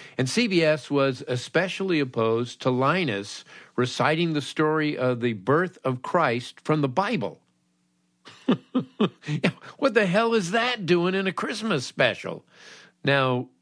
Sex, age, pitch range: male, 50-69, 115-160 Hz